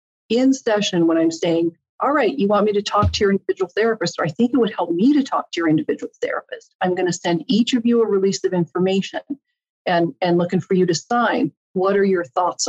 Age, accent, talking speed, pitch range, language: 50-69, American, 240 wpm, 180-240 Hz, English